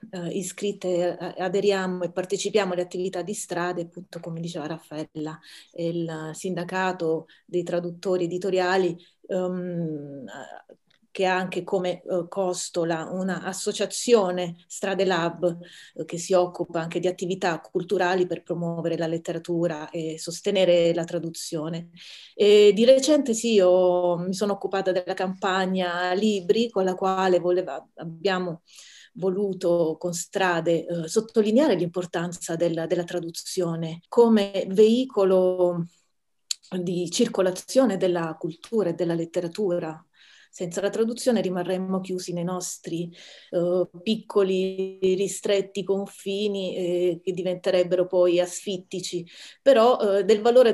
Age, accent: 30-49, native